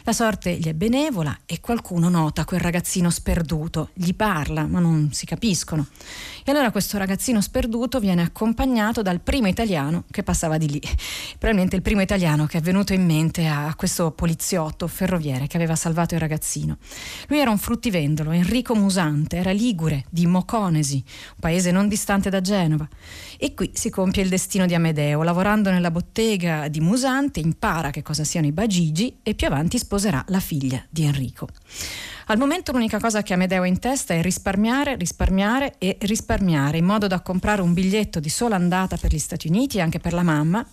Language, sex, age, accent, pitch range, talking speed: Italian, female, 40-59, native, 160-215 Hz, 180 wpm